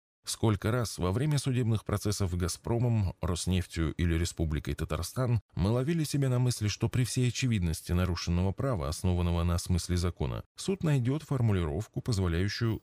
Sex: male